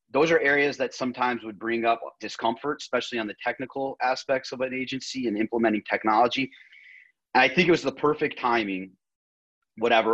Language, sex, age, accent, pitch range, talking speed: English, male, 30-49, American, 105-125 Hz, 165 wpm